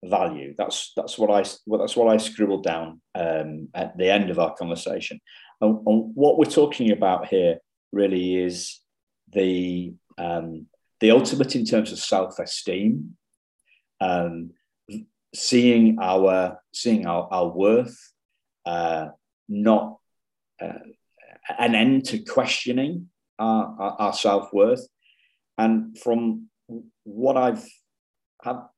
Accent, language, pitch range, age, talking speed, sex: British, English, 90-115 Hz, 40-59, 120 wpm, male